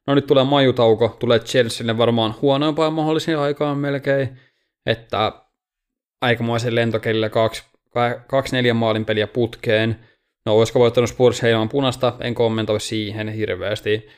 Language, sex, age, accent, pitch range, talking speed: Finnish, male, 20-39, native, 110-125 Hz, 110 wpm